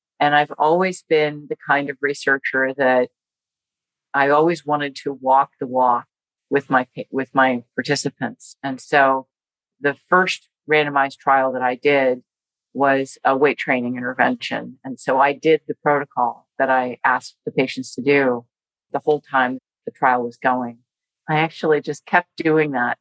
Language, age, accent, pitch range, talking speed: English, 40-59, American, 135-165 Hz, 160 wpm